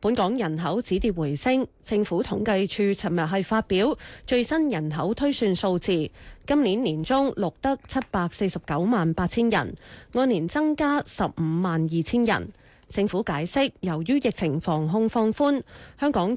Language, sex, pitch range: Chinese, female, 165-225 Hz